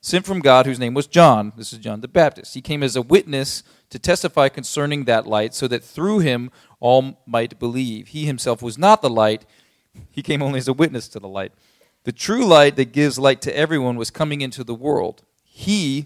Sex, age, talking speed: male, 40-59, 215 wpm